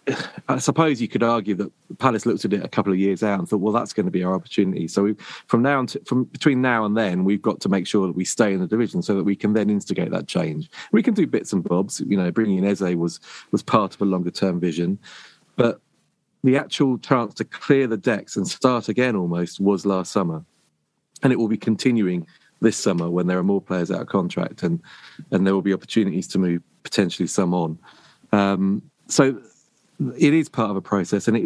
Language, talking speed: English, 235 wpm